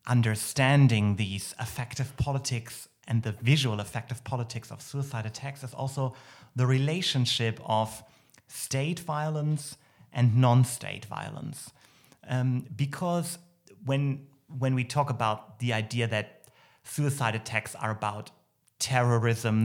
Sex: male